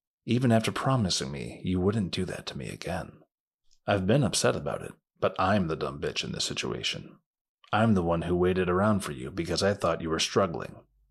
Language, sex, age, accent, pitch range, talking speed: English, male, 30-49, American, 90-115 Hz, 205 wpm